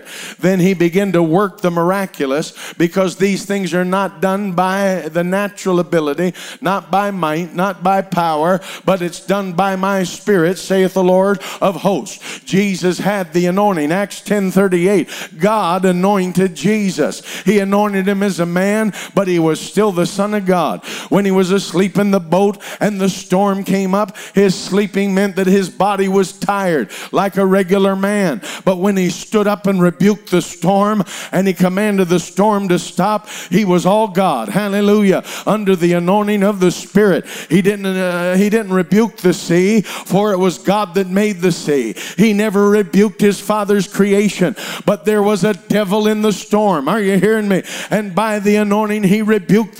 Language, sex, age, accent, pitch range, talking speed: English, male, 50-69, American, 185-210 Hz, 180 wpm